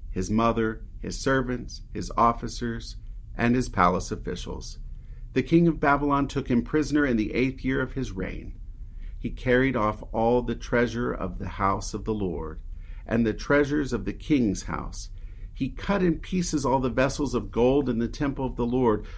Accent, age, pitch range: American, 50-69, 95-130 Hz